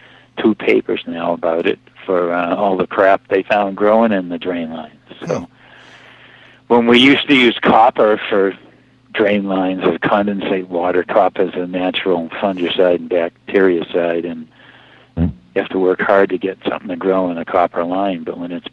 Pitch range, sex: 85-105 Hz, male